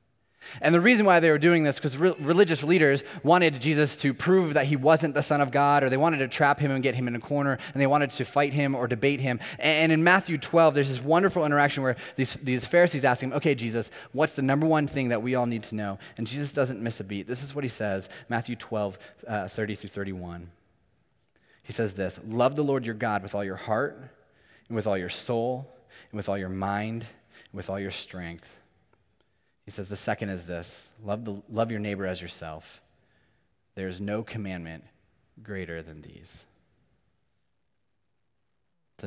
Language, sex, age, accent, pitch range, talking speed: English, male, 20-39, American, 100-140 Hz, 205 wpm